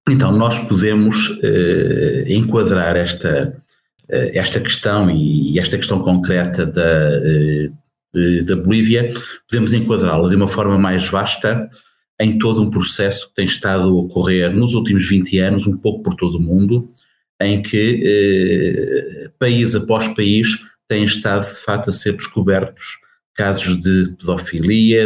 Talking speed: 135 wpm